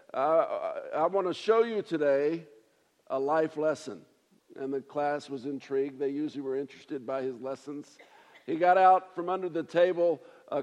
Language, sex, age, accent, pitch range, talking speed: English, male, 50-69, American, 150-185 Hz, 170 wpm